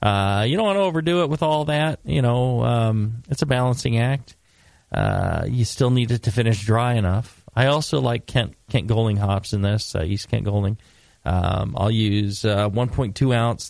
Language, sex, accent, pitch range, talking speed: English, male, American, 95-130 Hz, 200 wpm